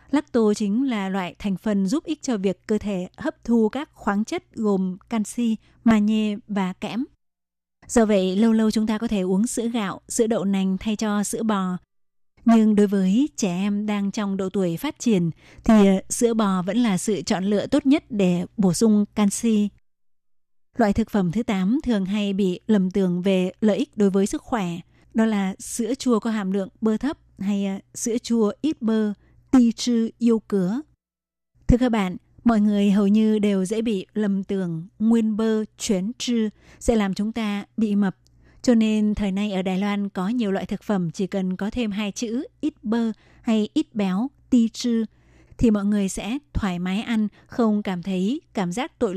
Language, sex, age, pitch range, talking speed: Vietnamese, female, 20-39, 195-235 Hz, 195 wpm